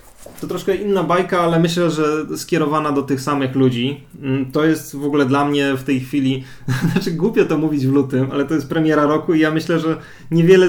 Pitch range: 130-160 Hz